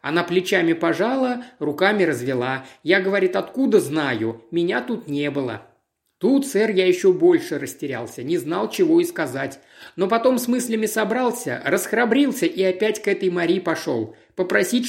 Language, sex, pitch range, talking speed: Russian, male, 160-215 Hz, 150 wpm